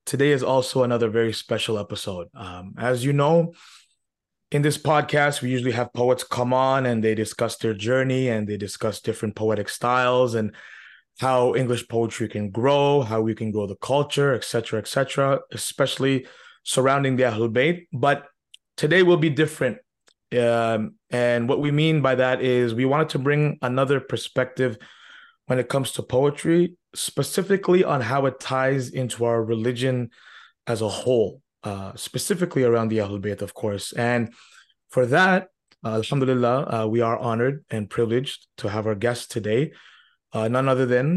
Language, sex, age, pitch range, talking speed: English, male, 20-39, 115-140 Hz, 165 wpm